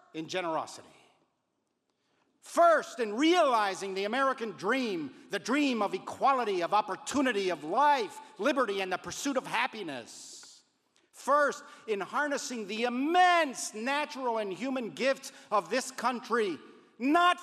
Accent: American